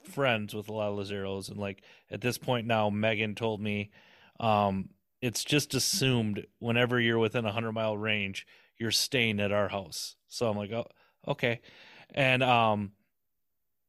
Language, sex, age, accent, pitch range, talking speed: English, male, 30-49, American, 115-155 Hz, 170 wpm